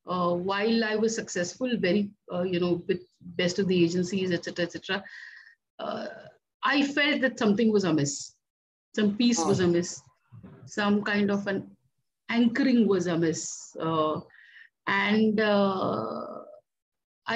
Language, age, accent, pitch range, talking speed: English, 50-69, Indian, 180-230 Hz, 125 wpm